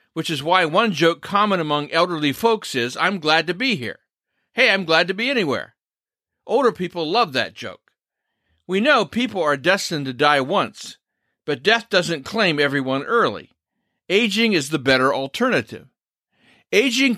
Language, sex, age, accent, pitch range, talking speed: English, male, 50-69, American, 150-210 Hz, 160 wpm